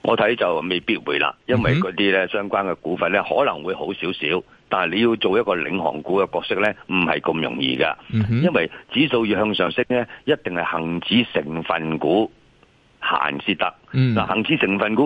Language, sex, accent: Chinese, male, native